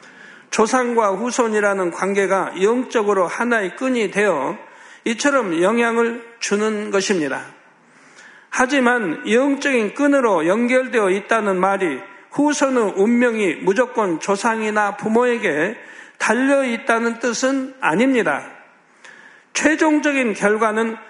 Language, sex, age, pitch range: Korean, male, 50-69, 205-255 Hz